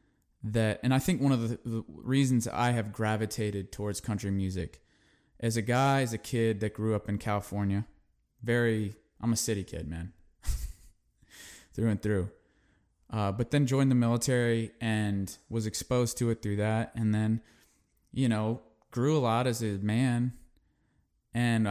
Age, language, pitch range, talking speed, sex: 20-39, English, 105-125 Hz, 165 wpm, male